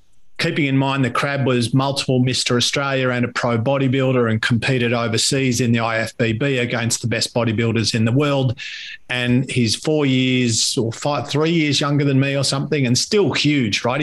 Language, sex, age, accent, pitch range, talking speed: English, male, 40-59, Australian, 120-145 Hz, 185 wpm